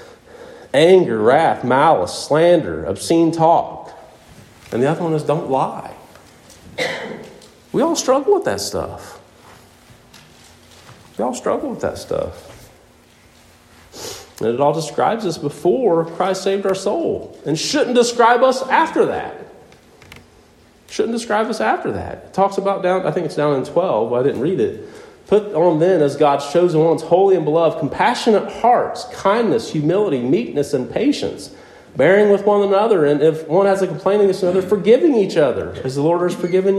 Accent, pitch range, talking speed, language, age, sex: American, 150-210 Hz, 170 wpm, English, 40-59, male